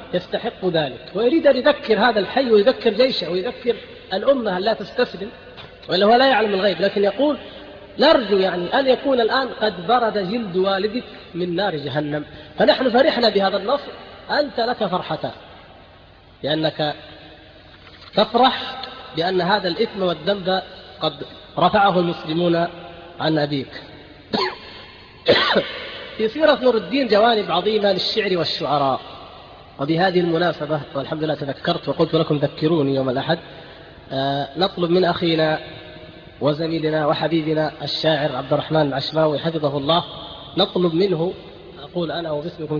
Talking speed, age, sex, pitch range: 115 wpm, 30-49, female, 155-210 Hz